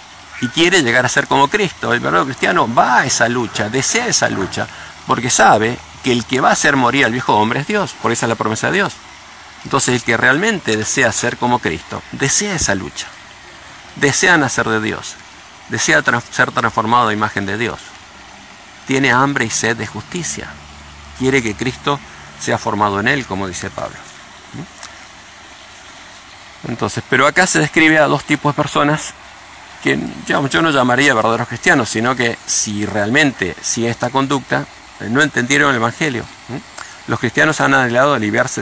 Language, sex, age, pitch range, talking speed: English, male, 50-69, 100-130 Hz, 170 wpm